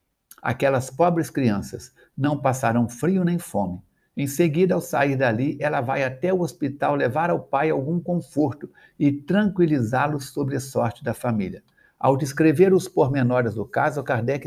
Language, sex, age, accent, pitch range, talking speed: Portuguese, male, 60-79, Brazilian, 120-150 Hz, 155 wpm